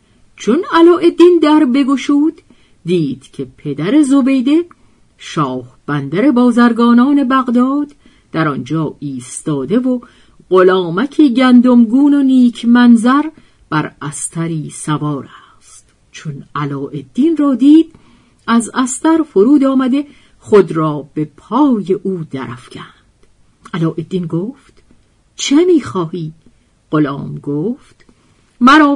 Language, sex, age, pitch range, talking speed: Persian, female, 50-69, 150-250 Hz, 95 wpm